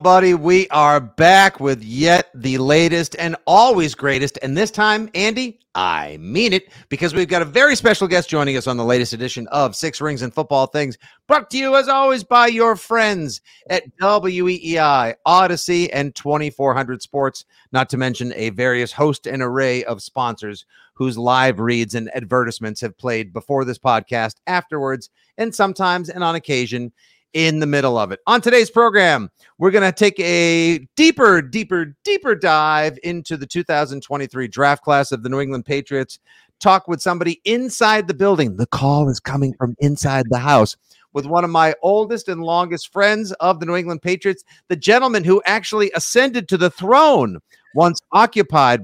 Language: English